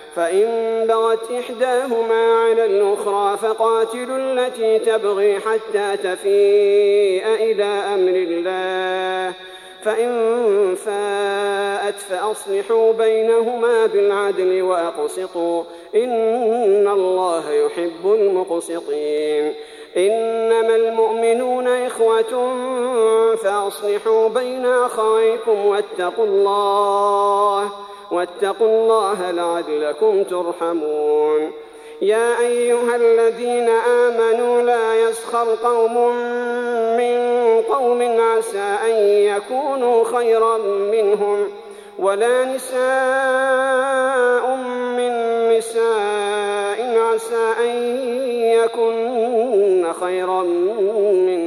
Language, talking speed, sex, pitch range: Arabic, 70 wpm, male, 200-240 Hz